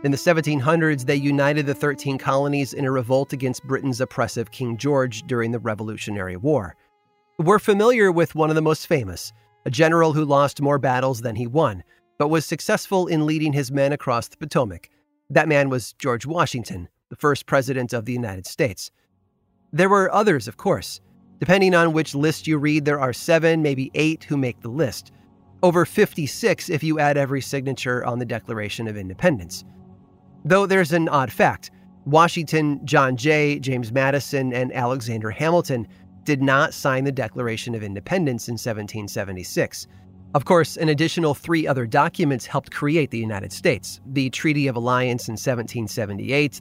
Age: 30-49